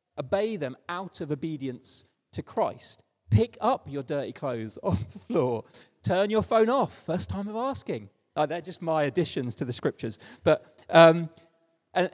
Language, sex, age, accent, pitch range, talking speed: English, male, 30-49, British, 135-195 Hz, 170 wpm